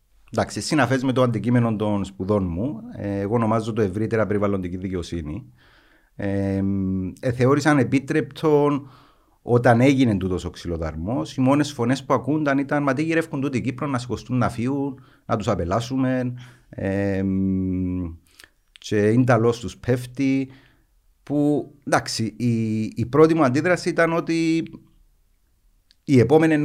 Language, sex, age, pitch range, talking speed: Greek, male, 50-69, 95-130 Hz, 135 wpm